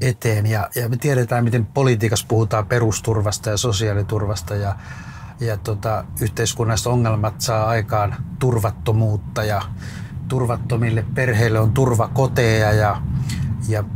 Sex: male